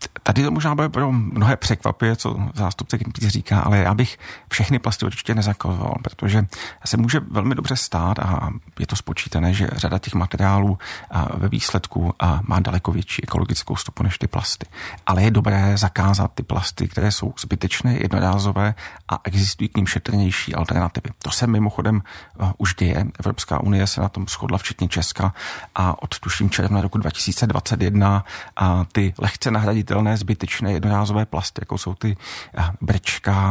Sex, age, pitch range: male, 40-59, 95-105 Hz